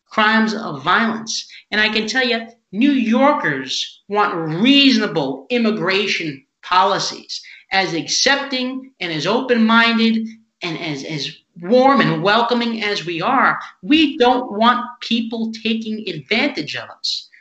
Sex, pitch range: male, 200-245 Hz